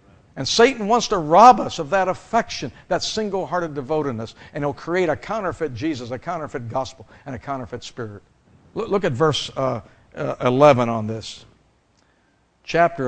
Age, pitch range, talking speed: 60-79, 125-205 Hz, 160 wpm